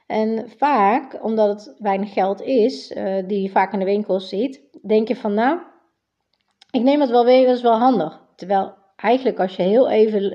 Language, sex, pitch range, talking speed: Dutch, female, 195-250 Hz, 195 wpm